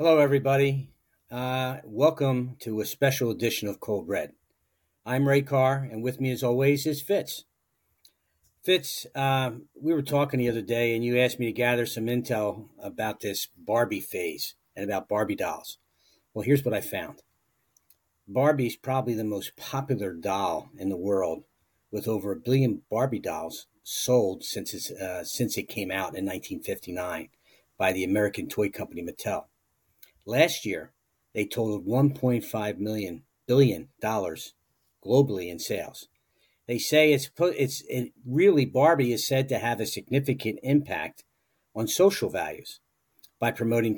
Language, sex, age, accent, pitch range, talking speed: English, male, 50-69, American, 105-135 Hz, 155 wpm